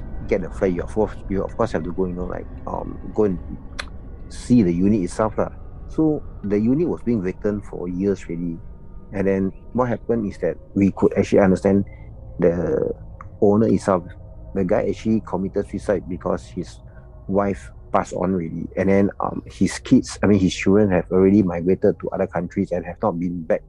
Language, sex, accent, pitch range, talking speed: English, male, Malaysian, 90-100 Hz, 195 wpm